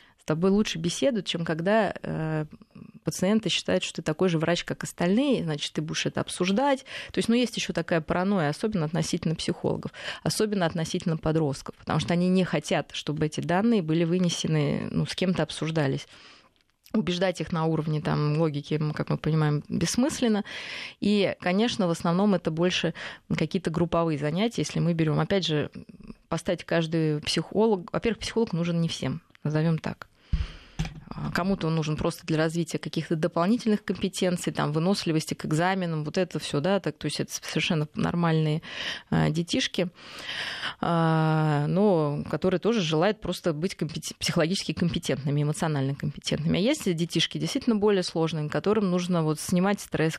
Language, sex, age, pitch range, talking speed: Russian, female, 20-39, 155-190 Hz, 150 wpm